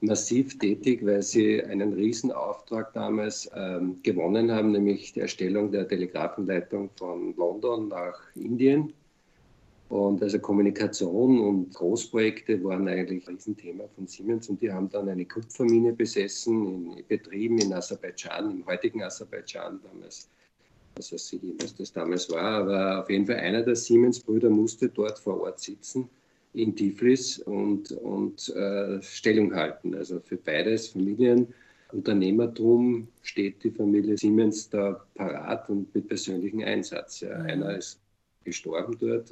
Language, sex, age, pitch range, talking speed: German, male, 50-69, 100-115 Hz, 135 wpm